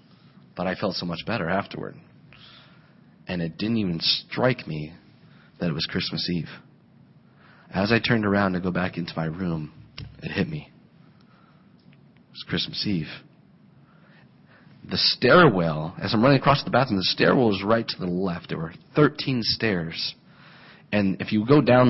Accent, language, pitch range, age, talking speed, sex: American, English, 85-100 Hz, 30-49, 160 wpm, male